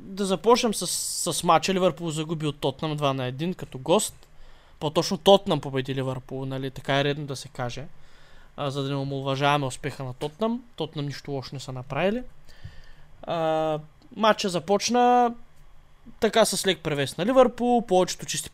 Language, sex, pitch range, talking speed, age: Bulgarian, male, 145-195 Hz, 150 wpm, 20-39